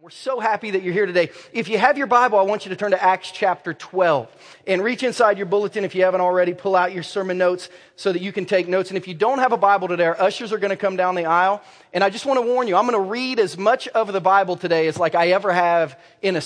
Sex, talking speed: male, 300 wpm